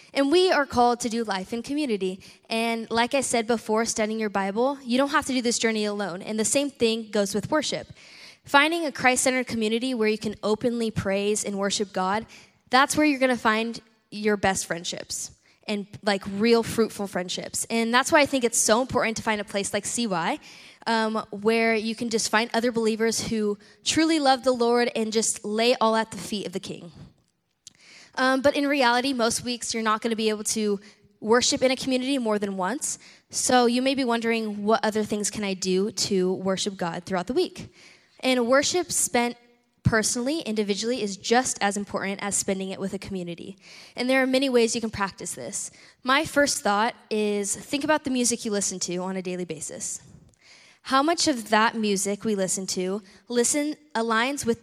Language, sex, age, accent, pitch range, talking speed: English, female, 10-29, American, 200-250 Hz, 200 wpm